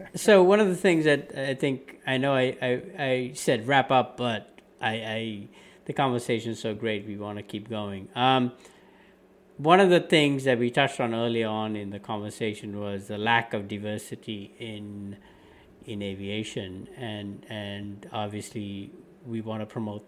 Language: English